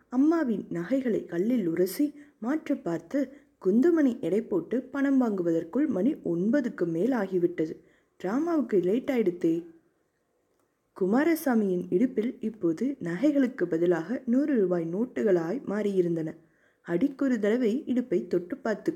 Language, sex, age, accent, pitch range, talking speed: Tamil, female, 20-39, native, 180-260 Hz, 100 wpm